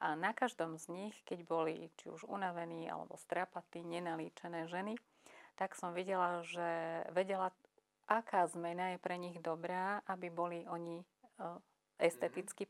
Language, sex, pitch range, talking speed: Slovak, female, 175-190 Hz, 135 wpm